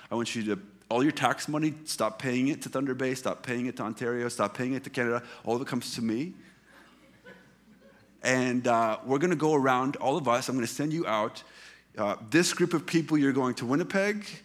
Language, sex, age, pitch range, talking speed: English, male, 30-49, 120-150 Hz, 225 wpm